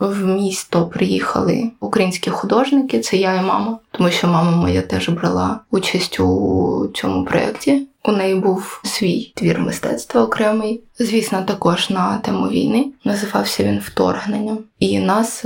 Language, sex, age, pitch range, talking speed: Ukrainian, female, 20-39, 180-225 Hz, 140 wpm